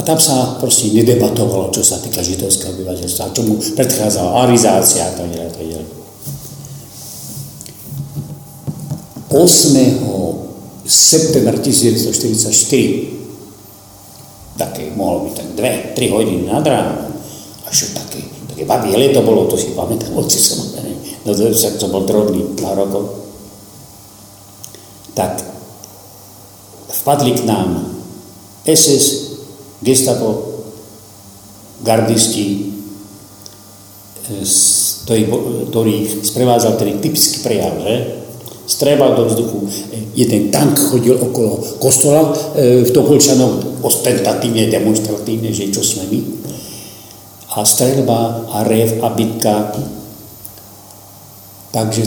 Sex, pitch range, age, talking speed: male, 100-125 Hz, 50-69, 95 wpm